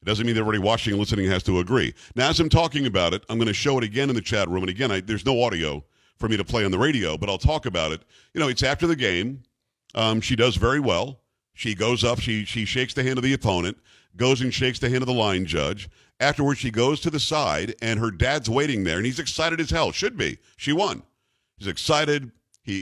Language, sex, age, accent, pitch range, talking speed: English, male, 50-69, American, 110-145 Hz, 260 wpm